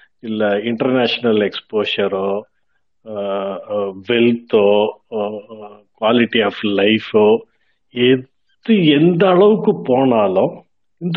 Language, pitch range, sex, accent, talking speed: Tamil, 115-165 Hz, male, native, 65 wpm